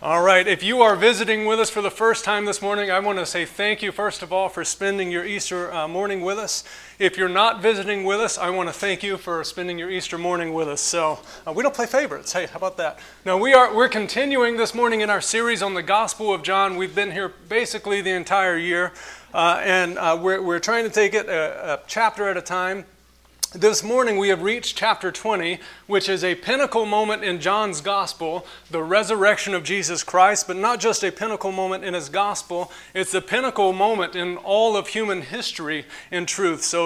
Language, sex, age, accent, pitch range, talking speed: English, male, 30-49, American, 175-210 Hz, 225 wpm